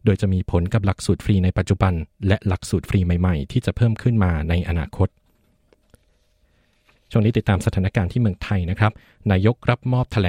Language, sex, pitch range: Thai, male, 95-110 Hz